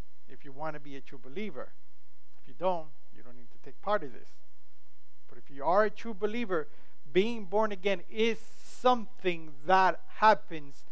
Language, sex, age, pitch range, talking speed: English, male, 50-69, 145-190 Hz, 180 wpm